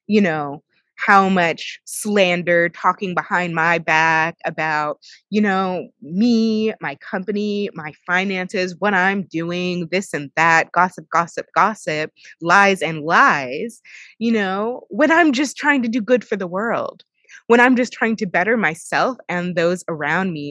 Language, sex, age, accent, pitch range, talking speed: English, female, 20-39, American, 165-205 Hz, 150 wpm